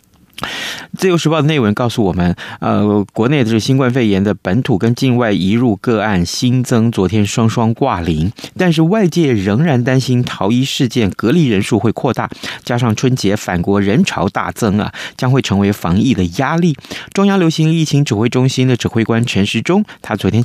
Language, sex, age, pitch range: Chinese, male, 30-49, 100-135 Hz